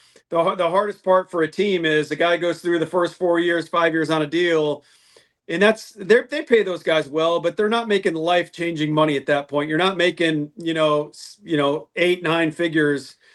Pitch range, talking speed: 155-190 Hz, 220 wpm